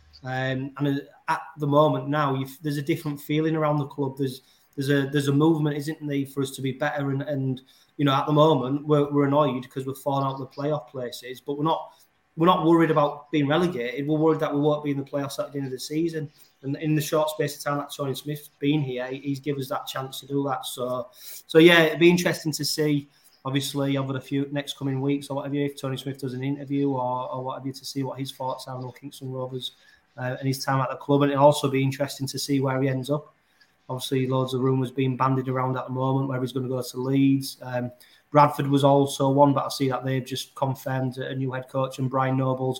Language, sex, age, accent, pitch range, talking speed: English, male, 20-39, British, 130-150 Hz, 250 wpm